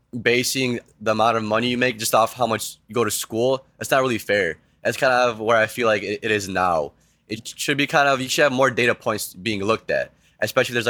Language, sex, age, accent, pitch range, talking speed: English, male, 10-29, American, 110-125 Hz, 260 wpm